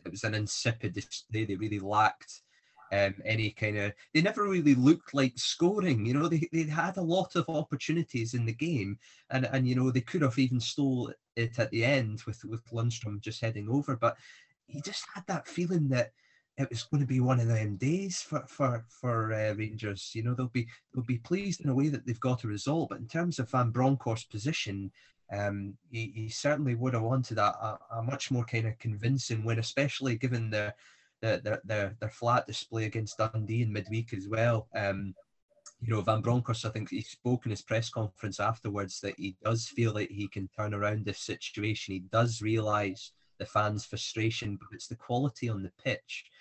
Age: 20-39